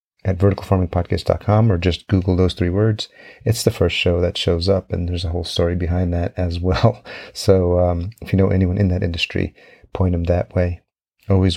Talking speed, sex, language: 195 wpm, male, English